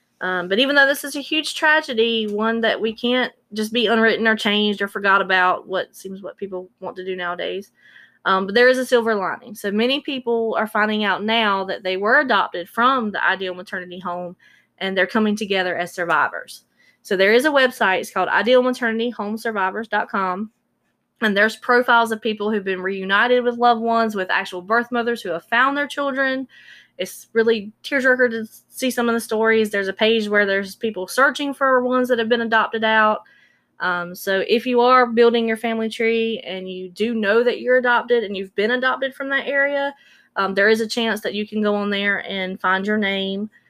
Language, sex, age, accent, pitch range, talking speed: English, female, 20-39, American, 190-240 Hz, 200 wpm